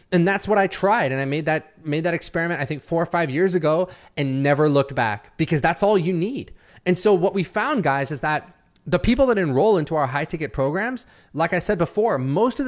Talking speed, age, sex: 240 wpm, 30-49, male